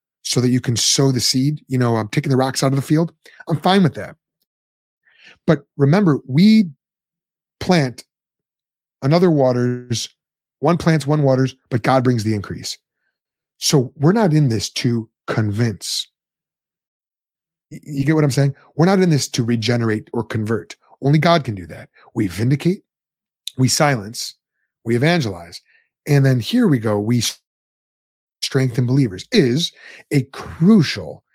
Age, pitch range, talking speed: 30-49, 115-155 Hz, 150 wpm